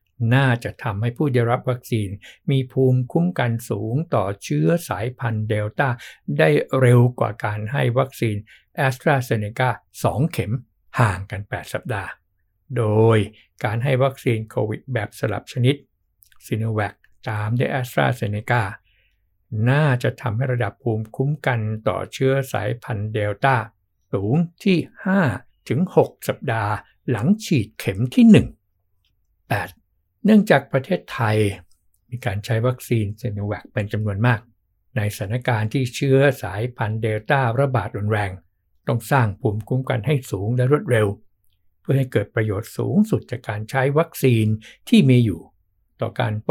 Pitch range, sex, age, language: 105-130 Hz, male, 60-79, Thai